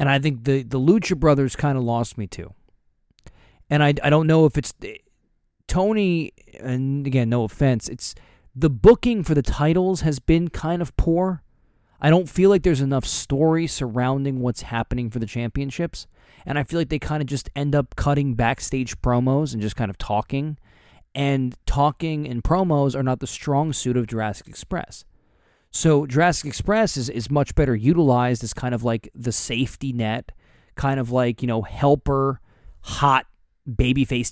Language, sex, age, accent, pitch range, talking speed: English, male, 20-39, American, 115-150 Hz, 175 wpm